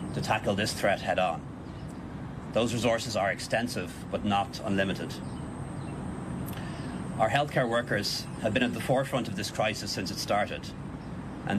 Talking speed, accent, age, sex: 145 wpm, Irish, 40-59, male